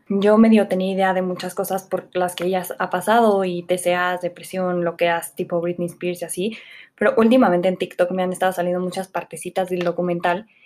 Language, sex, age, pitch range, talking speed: Spanish, female, 20-39, 180-200 Hz, 210 wpm